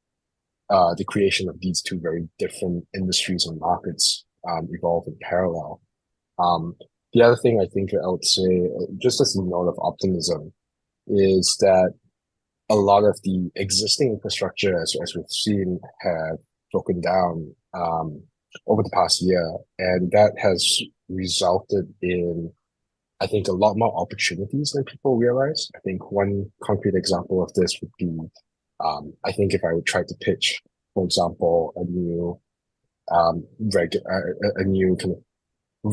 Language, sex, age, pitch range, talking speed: English, male, 20-39, 85-100 Hz, 155 wpm